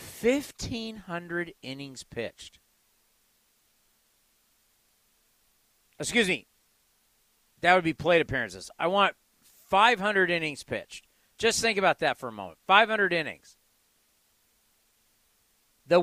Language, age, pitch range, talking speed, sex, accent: English, 50-69, 155-210 Hz, 95 wpm, male, American